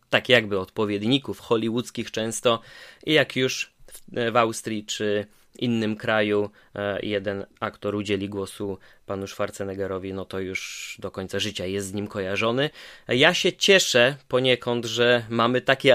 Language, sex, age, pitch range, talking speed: Polish, male, 20-39, 105-125 Hz, 135 wpm